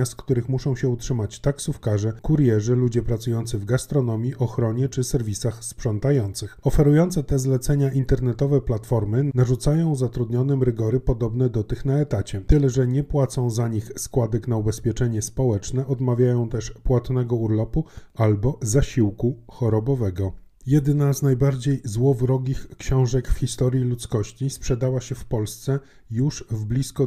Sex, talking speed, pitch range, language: male, 135 wpm, 115-135 Hz, Polish